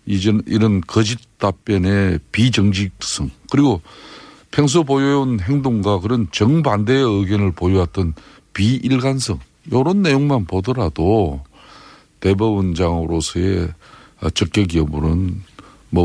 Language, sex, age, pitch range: Korean, male, 50-69, 90-125 Hz